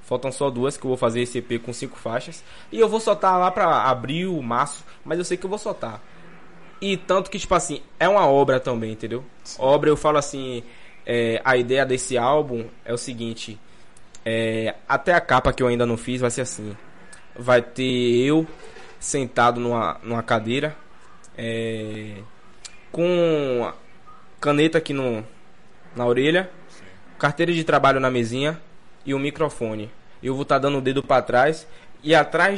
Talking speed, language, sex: 175 wpm, Portuguese, male